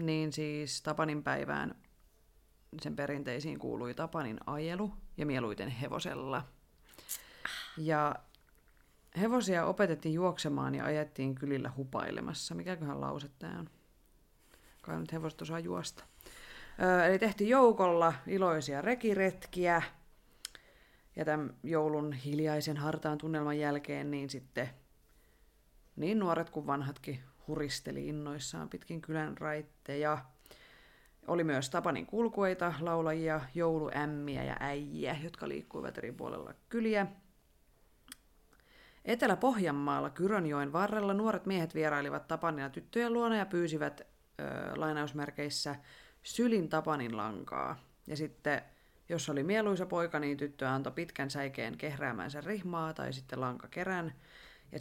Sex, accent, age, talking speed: female, native, 30-49, 110 wpm